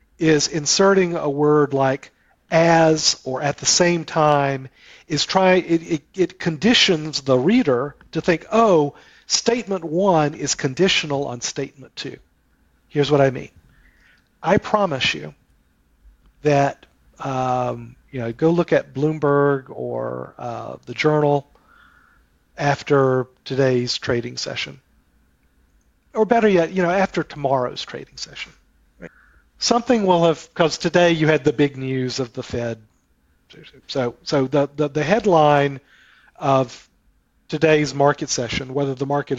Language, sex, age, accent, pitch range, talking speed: English, male, 40-59, American, 130-165 Hz, 135 wpm